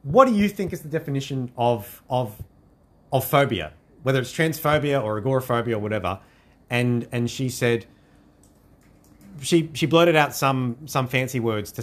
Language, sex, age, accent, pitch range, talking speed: English, male, 30-49, Australian, 100-130 Hz, 155 wpm